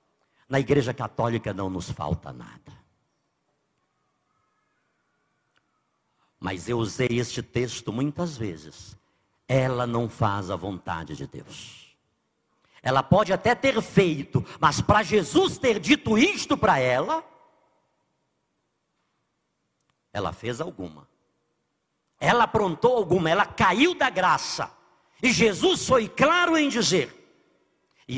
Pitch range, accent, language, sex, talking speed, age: 115-180 Hz, Brazilian, Portuguese, male, 110 wpm, 50-69